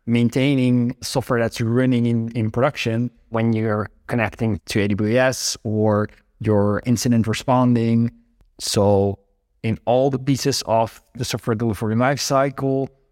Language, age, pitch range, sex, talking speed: English, 20-39, 110-130 Hz, male, 120 wpm